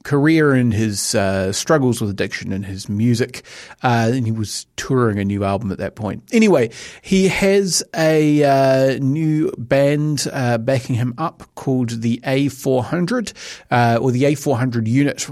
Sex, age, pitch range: male, 30-49, 115-150 Hz